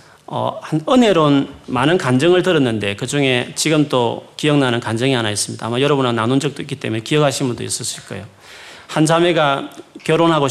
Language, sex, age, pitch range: Korean, male, 40-59, 115-155 Hz